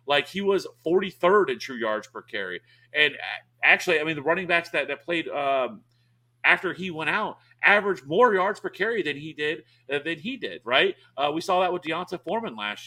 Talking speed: 210 wpm